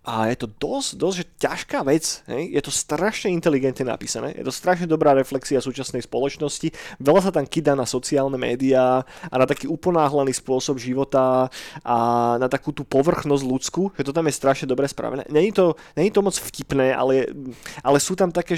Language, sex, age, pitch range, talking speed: Slovak, male, 30-49, 125-150 Hz, 185 wpm